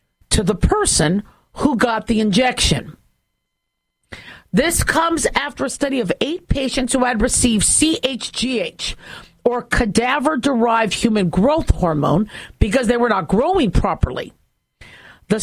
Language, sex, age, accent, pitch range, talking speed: English, female, 50-69, American, 195-255 Hz, 120 wpm